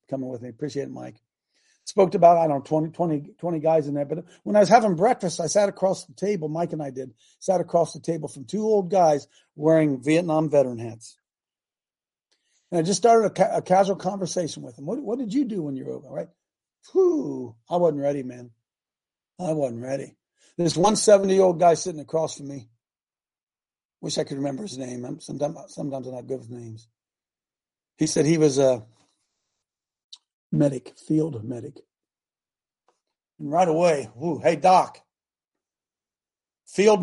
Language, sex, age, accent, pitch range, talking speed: English, male, 50-69, American, 140-190 Hz, 175 wpm